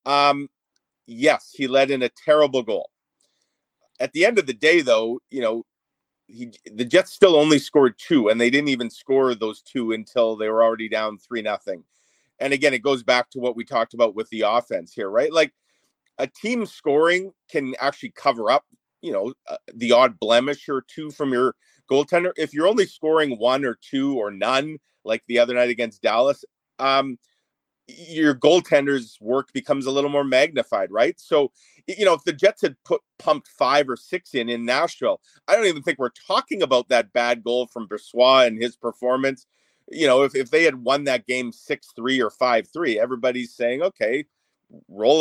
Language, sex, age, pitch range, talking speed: English, male, 40-59, 120-145 Hz, 190 wpm